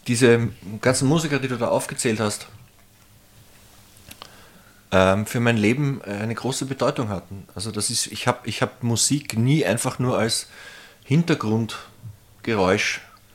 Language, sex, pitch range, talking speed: German, male, 105-125 Hz, 125 wpm